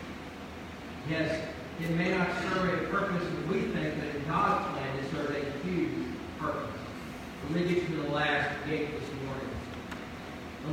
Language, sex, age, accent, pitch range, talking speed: English, male, 40-59, American, 175-215 Hz, 160 wpm